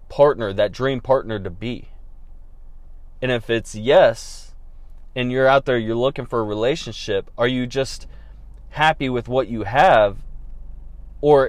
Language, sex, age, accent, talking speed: English, male, 20-39, American, 145 wpm